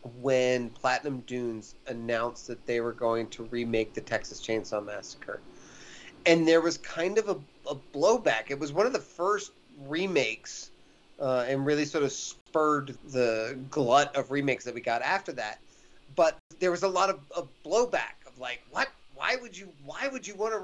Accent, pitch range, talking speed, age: American, 135-215 Hz, 185 wpm, 30-49